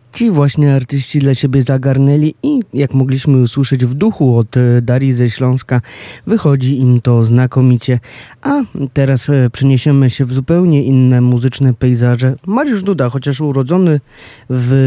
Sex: male